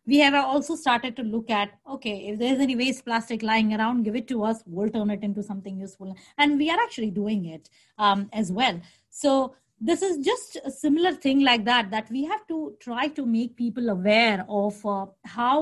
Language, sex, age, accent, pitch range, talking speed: English, female, 20-39, Indian, 210-265 Hz, 215 wpm